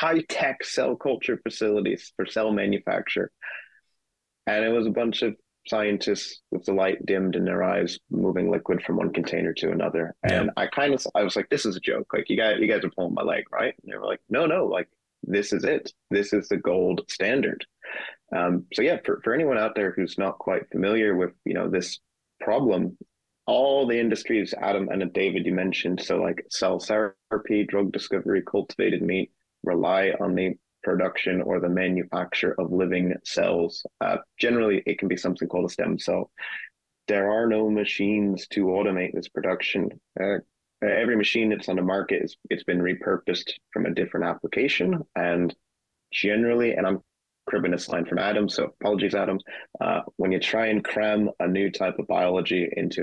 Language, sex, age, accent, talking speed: English, male, 30-49, American, 185 wpm